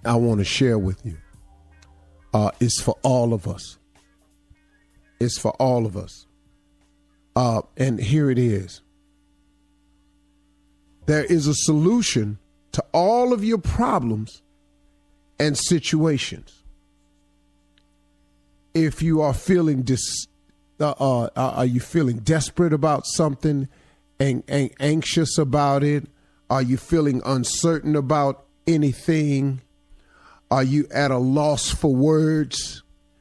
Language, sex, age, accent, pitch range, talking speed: English, male, 50-69, American, 95-155 Hz, 115 wpm